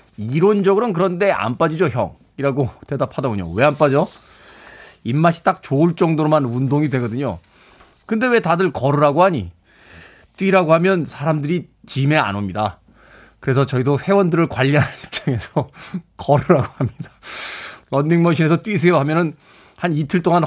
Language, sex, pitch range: Korean, male, 120-165 Hz